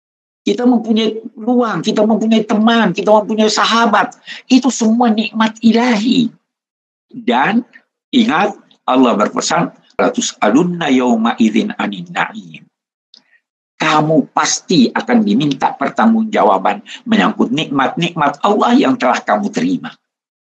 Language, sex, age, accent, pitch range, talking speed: Indonesian, male, 60-79, native, 200-245 Hz, 95 wpm